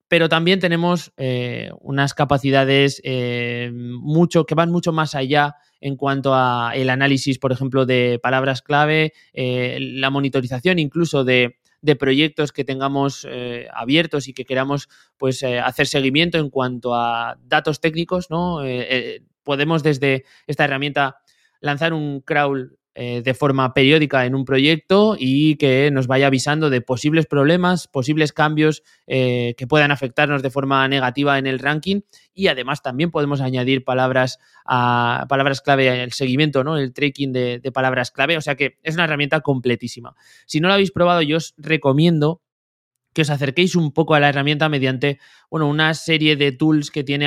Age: 20-39